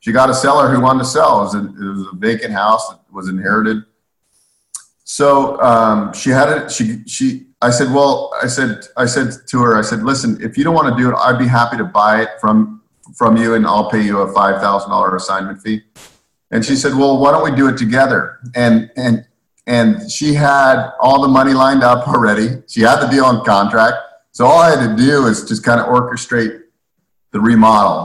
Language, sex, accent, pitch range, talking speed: English, male, American, 110-135 Hz, 220 wpm